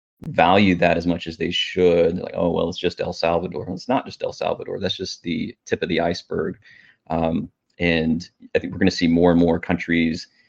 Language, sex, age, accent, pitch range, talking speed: English, male, 30-49, American, 85-95 Hz, 225 wpm